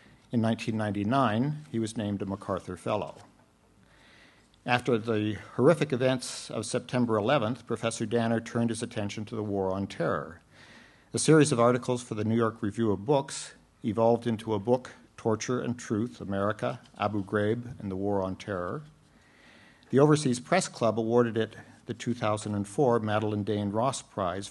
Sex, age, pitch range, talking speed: male, 50-69, 105-125 Hz, 155 wpm